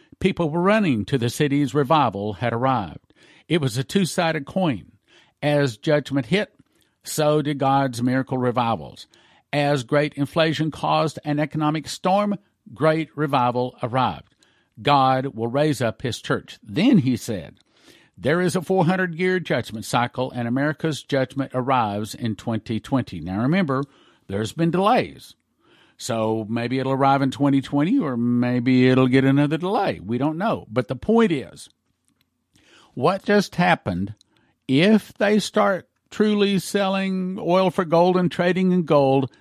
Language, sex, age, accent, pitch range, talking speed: English, male, 50-69, American, 125-165 Hz, 140 wpm